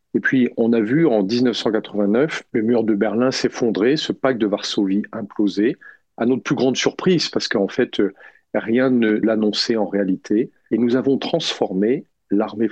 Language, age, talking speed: French, 50-69, 165 wpm